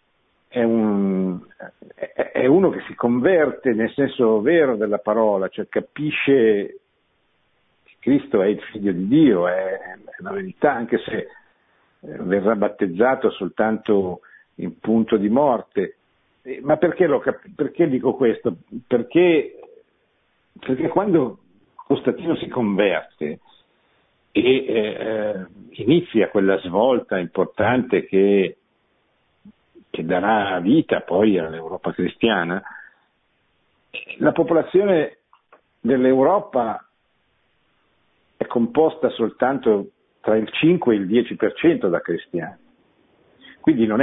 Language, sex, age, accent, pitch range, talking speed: Italian, male, 60-79, native, 100-150 Hz, 100 wpm